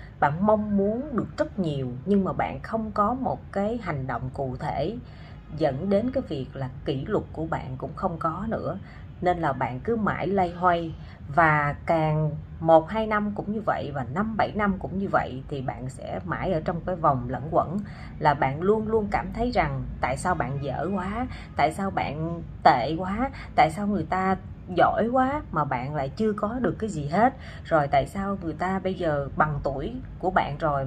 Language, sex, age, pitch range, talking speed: Vietnamese, female, 30-49, 140-205 Hz, 200 wpm